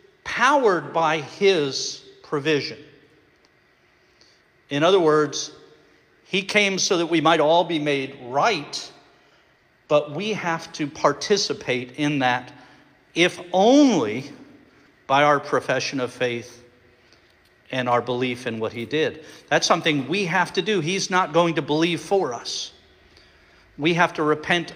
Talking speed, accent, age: 135 wpm, American, 50-69